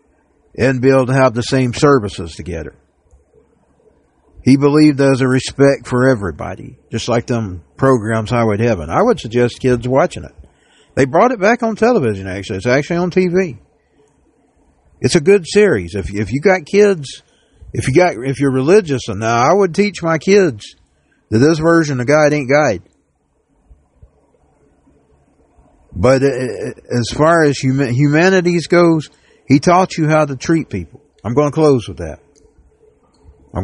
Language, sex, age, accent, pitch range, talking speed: English, male, 60-79, American, 105-150 Hz, 160 wpm